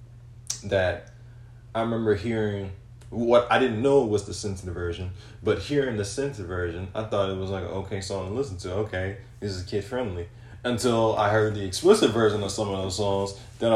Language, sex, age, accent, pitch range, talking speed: English, male, 20-39, American, 100-120 Hz, 190 wpm